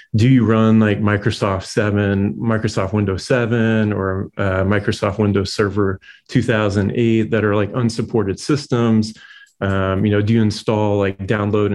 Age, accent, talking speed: 30-49, American, 145 wpm